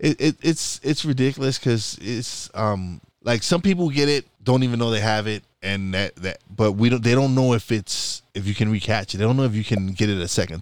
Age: 20-39